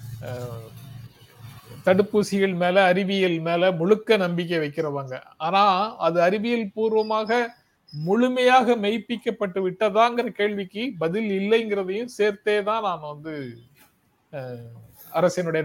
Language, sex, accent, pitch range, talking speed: Tamil, male, native, 150-190 Hz, 85 wpm